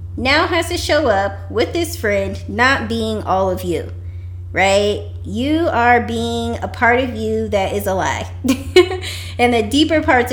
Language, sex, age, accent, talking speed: English, female, 20-39, American, 170 wpm